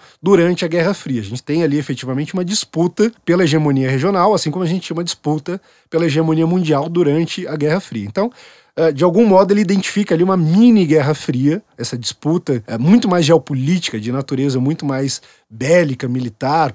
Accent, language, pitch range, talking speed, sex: Brazilian, Portuguese, 140-185 Hz, 180 wpm, male